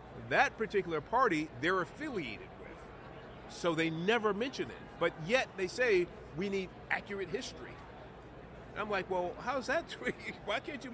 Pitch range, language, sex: 150-200 Hz, English, male